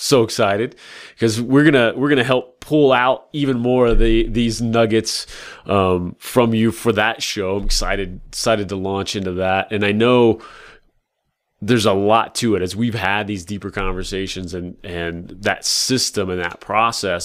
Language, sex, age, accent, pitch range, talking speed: English, male, 30-49, American, 95-115 Hz, 175 wpm